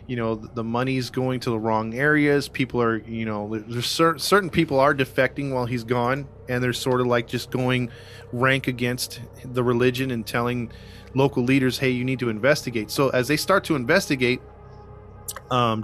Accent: American